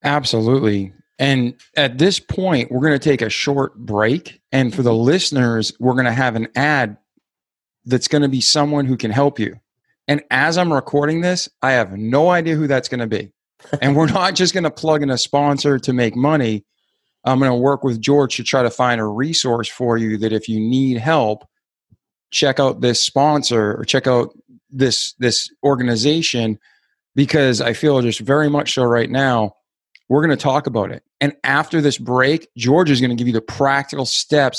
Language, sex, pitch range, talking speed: English, male, 120-150 Hz, 200 wpm